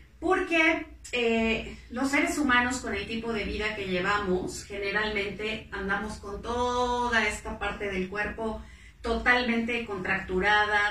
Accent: Mexican